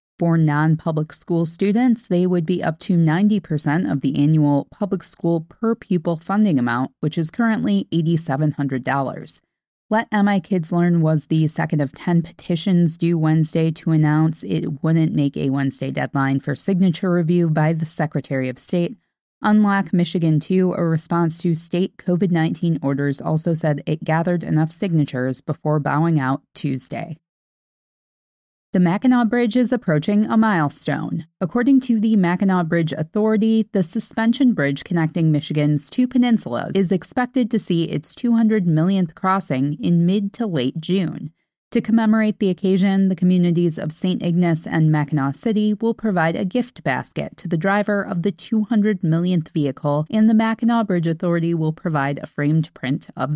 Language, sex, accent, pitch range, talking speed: English, female, American, 155-195 Hz, 155 wpm